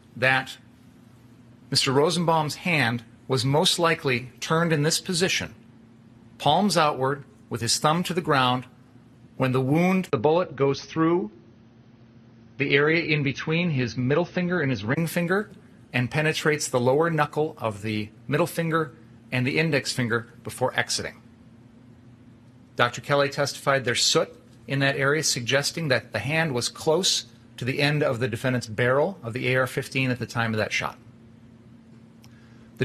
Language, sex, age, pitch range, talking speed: English, male, 40-59, 115-145 Hz, 150 wpm